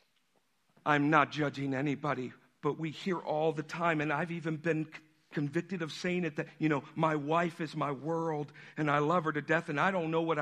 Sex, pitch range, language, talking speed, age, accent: male, 160-240 Hz, English, 220 wpm, 50-69, American